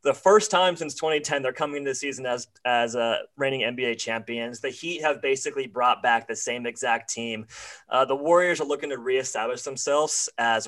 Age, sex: 30-49, male